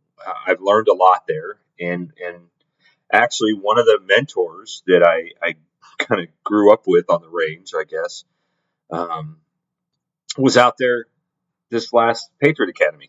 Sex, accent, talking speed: male, American, 145 wpm